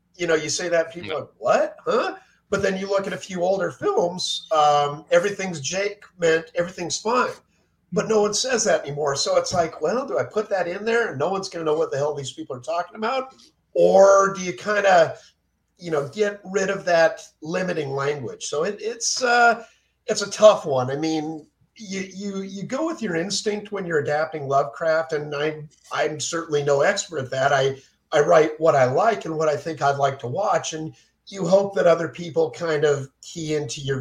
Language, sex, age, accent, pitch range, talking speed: English, male, 50-69, American, 145-205 Hz, 215 wpm